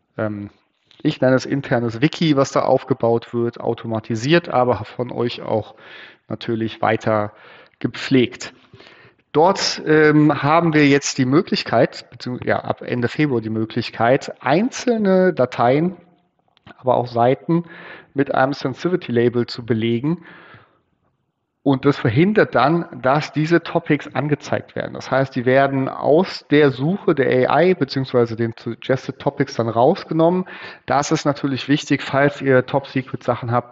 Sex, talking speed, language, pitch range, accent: male, 130 wpm, German, 115-145 Hz, German